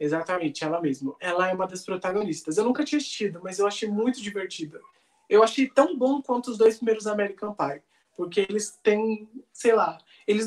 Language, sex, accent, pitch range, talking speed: Portuguese, male, Brazilian, 190-240 Hz, 190 wpm